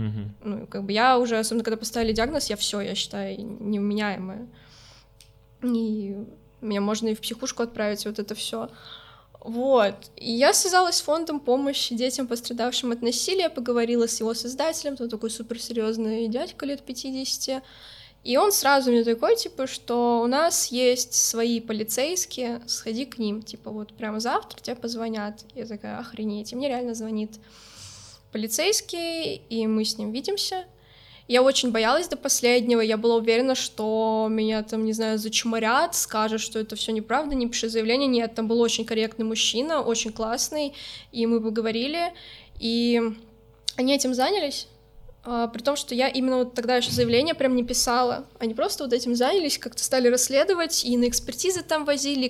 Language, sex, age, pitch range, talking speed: Russian, female, 10-29, 220-265 Hz, 160 wpm